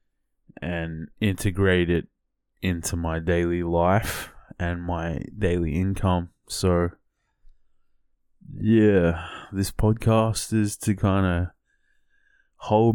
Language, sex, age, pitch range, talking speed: English, male, 20-39, 85-95 Hz, 95 wpm